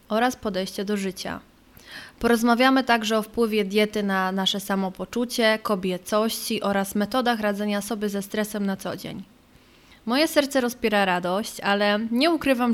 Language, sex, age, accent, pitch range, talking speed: Polish, female, 20-39, native, 200-235 Hz, 135 wpm